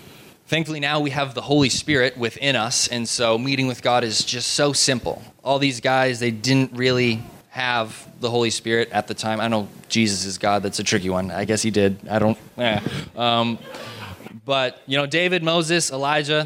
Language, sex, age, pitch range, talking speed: English, male, 20-39, 120-145 Hz, 195 wpm